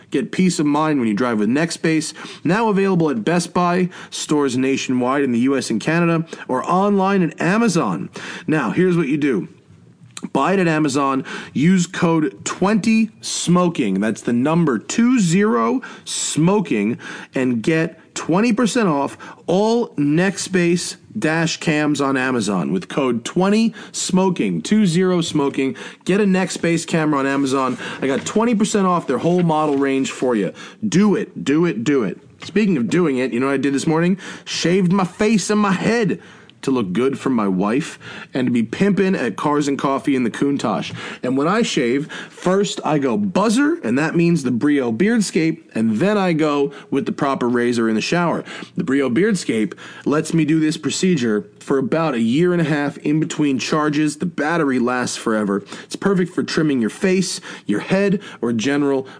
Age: 30-49